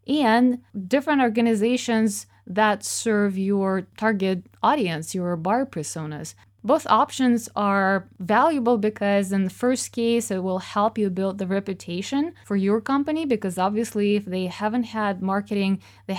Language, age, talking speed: English, 20-39, 140 wpm